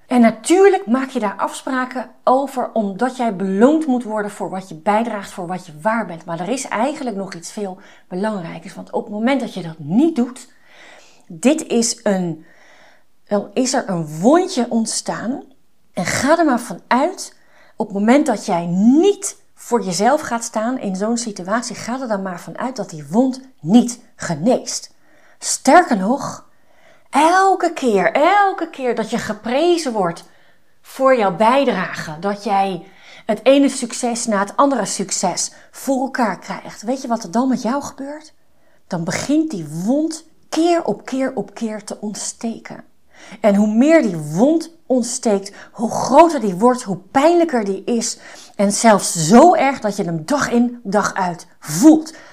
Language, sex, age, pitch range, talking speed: Dutch, female, 40-59, 200-270 Hz, 165 wpm